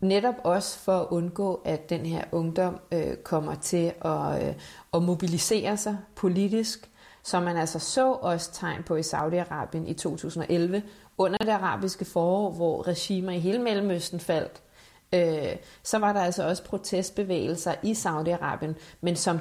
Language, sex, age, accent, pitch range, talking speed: Danish, female, 30-49, native, 170-200 Hz, 145 wpm